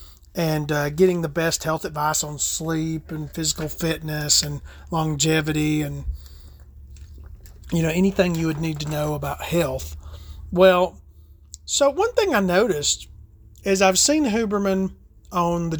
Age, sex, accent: 40-59, male, American